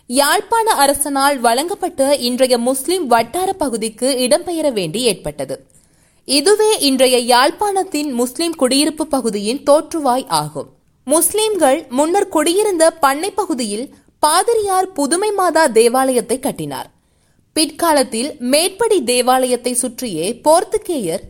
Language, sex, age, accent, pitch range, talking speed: Tamil, female, 20-39, native, 245-345 Hz, 95 wpm